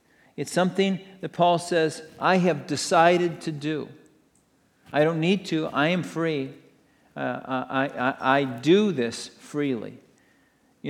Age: 50-69